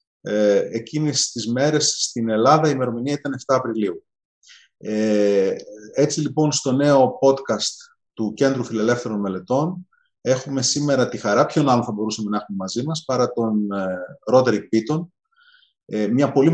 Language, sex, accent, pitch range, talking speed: Greek, male, native, 115-155 Hz, 135 wpm